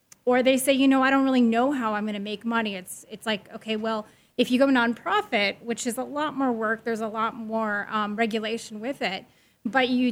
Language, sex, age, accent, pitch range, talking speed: English, female, 30-49, American, 215-250 Hz, 235 wpm